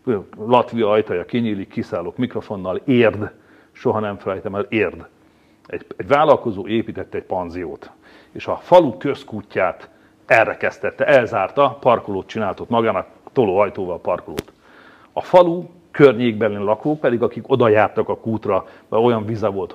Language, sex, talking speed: Hungarian, male, 135 wpm